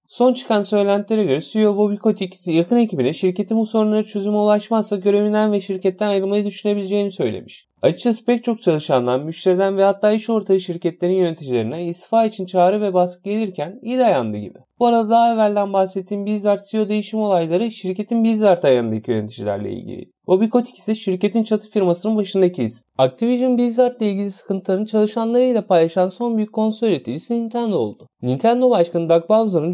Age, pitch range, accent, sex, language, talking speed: 30-49, 175-220 Hz, native, male, Turkish, 155 wpm